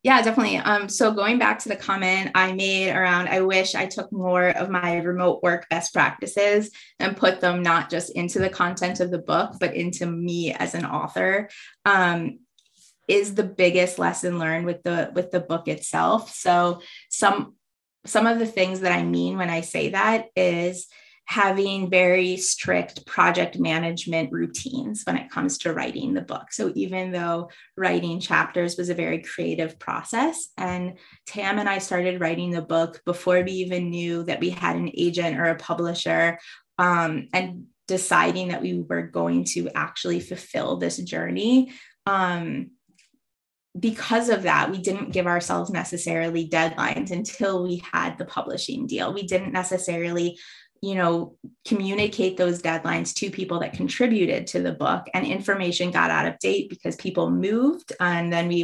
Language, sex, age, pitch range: English, female, 20-39, 170-195 Hz